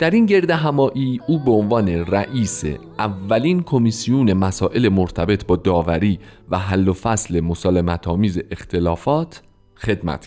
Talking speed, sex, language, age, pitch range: 125 wpm, male, Persian, 40-59, 95-135 Hz